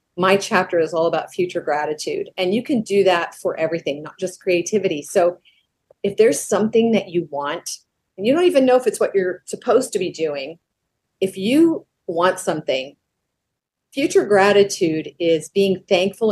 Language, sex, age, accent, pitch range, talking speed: English, female, 40-59, American, 175-215 Hz, 170 wpm